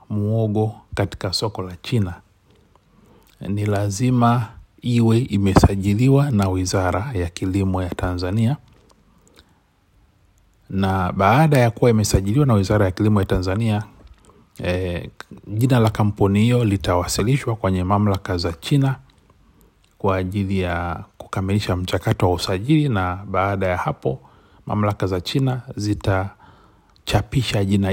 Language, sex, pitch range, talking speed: Swahili, male, 90-110 Hz, 110 wpm